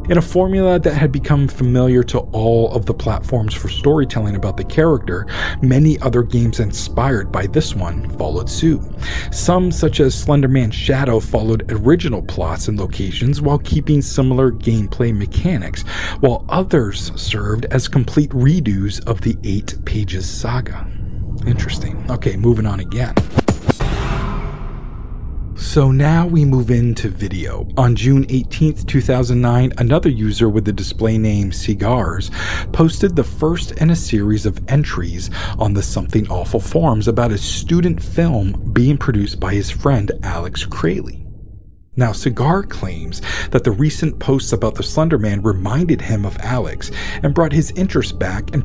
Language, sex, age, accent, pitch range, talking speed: English, male, 40-59, American, 100-130 Hz, 145 wpm